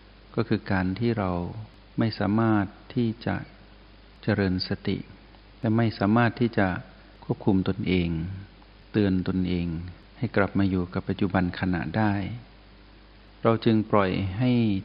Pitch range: 95-110 Hz